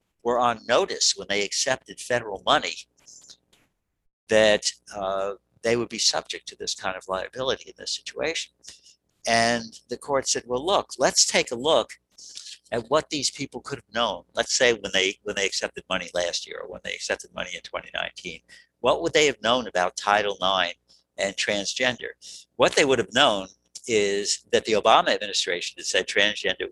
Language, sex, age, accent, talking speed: English, male, 60-79, American, 175 wpm